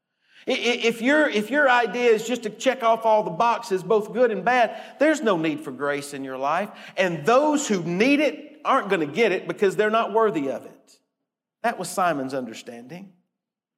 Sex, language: male, English